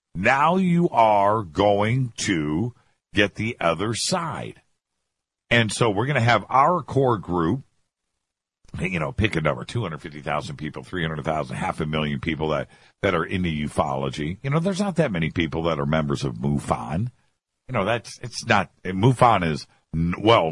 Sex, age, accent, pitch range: male, 50-69, American, 90-135 Hz